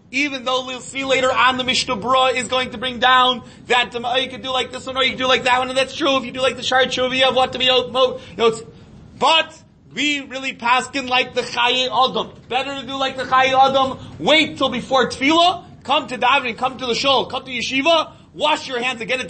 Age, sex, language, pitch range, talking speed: 30-49, male, English, 245-275 Hz, 240 wpm